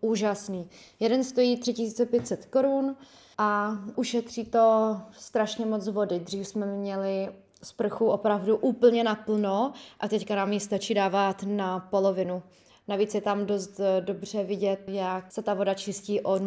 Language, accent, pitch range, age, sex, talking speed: Czech, native, 195-235 Hz, 20-39, female, 140 wpm